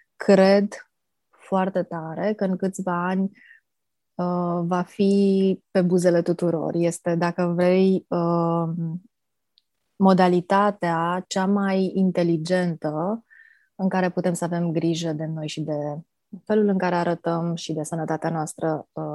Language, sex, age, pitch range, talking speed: Romanian, female, 20-39, 165-185 Hz, 115 wpm